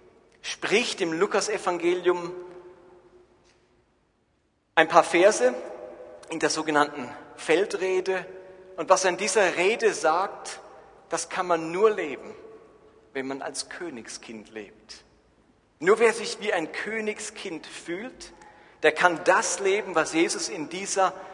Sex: male